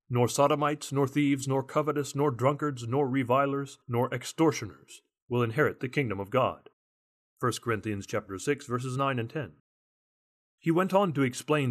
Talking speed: 160 wpm